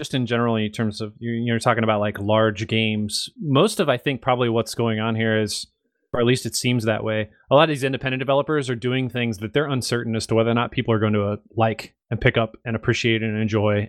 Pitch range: 110-135 Hz